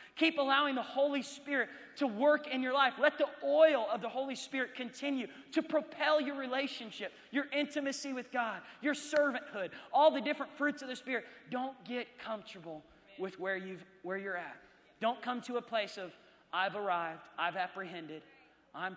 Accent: American